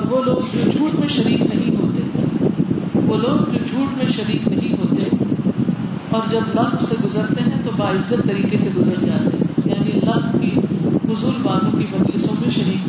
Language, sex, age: Urdu, female, 40-59